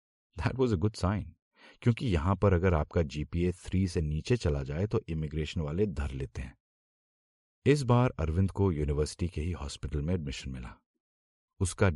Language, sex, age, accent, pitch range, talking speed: Hindi, male, 50-69, native, 75-100 Hz, 170 wpm